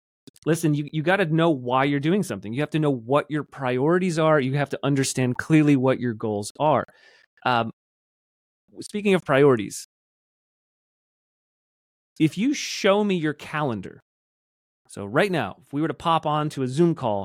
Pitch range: 125-160 Hz